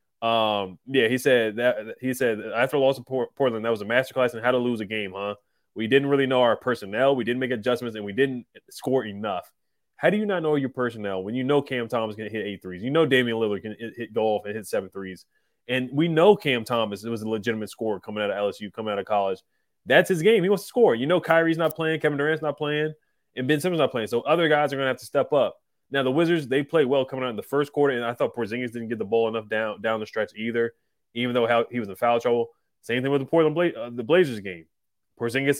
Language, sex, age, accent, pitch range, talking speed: English, male, 20-39, American, 110-135 Hz, 270 wpm